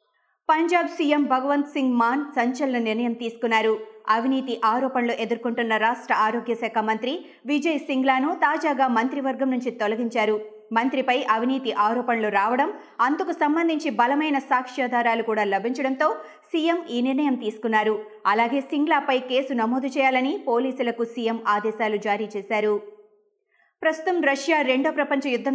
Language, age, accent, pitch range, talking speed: Telugu, 20-39, native, 220-280 Hz, 115 wpm